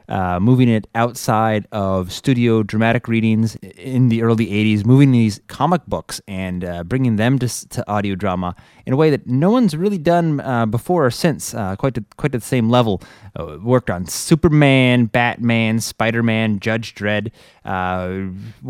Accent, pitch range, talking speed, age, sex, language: American, 95-120 Hz, 170 wpm, 20-39, male, English